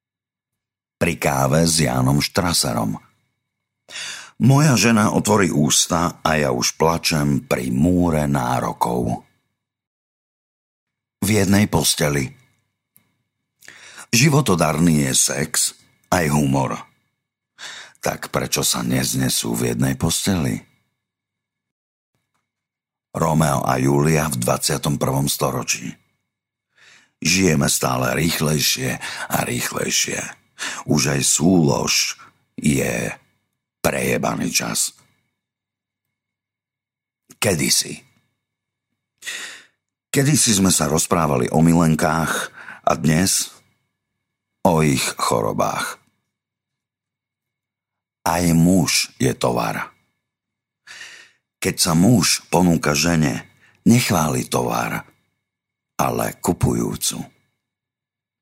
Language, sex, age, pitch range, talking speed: Slovak, male, 50-69, 75-120 Hz, 75 wpm